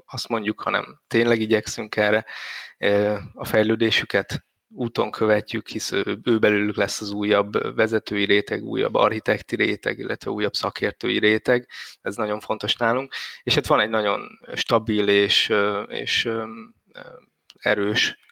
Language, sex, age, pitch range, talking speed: Hungarian, male, 20-39, 100-110 Hz, 125 wpm